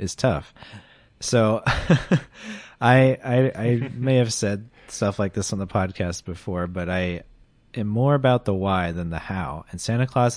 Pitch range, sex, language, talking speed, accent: 95-125 Hz, male, English, 170 wpm, American